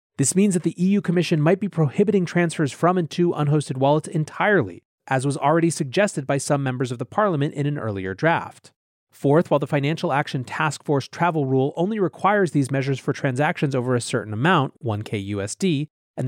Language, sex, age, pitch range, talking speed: English, male, 30-49, 130-175 Hz, 190 wpm